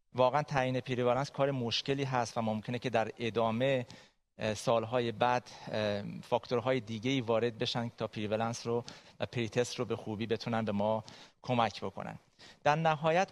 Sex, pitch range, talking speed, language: male, 115-140 Hz, 155 wpm, Persian